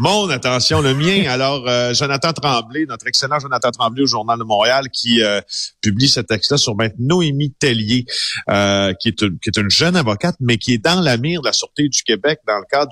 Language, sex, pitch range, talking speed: French, male, 105-140 Hz, 225 wpm